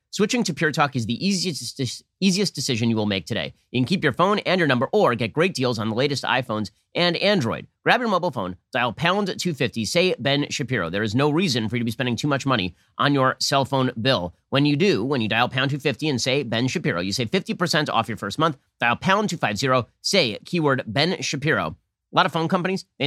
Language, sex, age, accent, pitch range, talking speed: English, male, 30-49, American, 115-155 Hz, 235 wpm